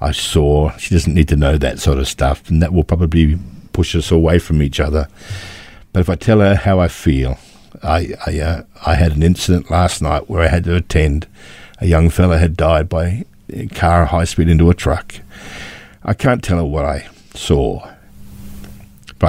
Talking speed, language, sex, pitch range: 200 wpm, English, male, 75-95 Hz